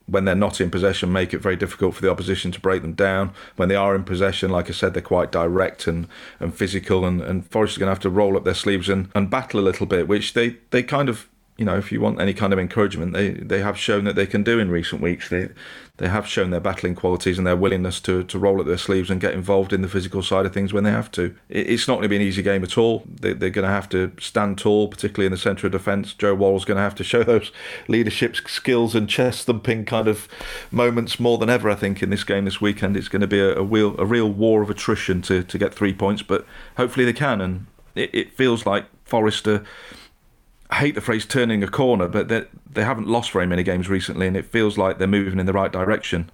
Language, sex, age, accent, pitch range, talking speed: English, male, 40-59, British, 95-105 Hz, 265 wpm